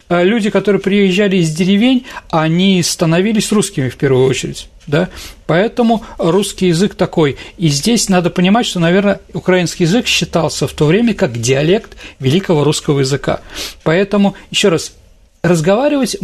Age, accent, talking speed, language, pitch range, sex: 40-59, native, 135 wpm, Russian, 150-195 Hz, male